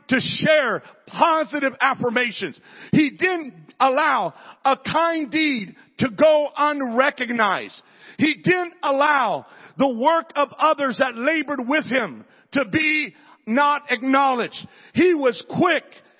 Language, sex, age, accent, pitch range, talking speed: English, male, 50-69, American, 235-295 Hz, 115 wpm